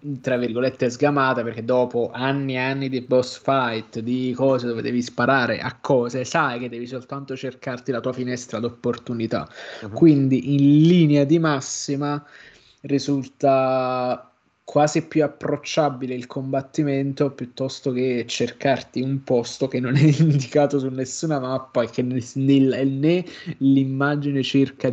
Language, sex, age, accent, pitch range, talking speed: Italian, male, 20-39, native, 125-140 Hz, 130 wpm